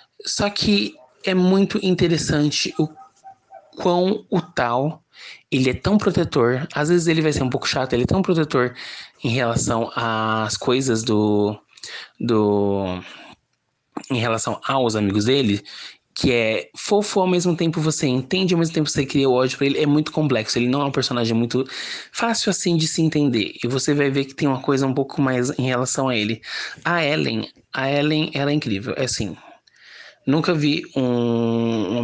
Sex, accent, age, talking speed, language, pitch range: male, Brazilian, 20-39, 180 wpm, Portuguese, 115-155 Hz